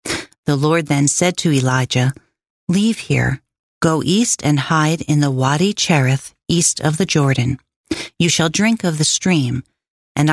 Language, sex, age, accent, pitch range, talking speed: English, female, 40-59, American, 135-185 Hz, 155 wpm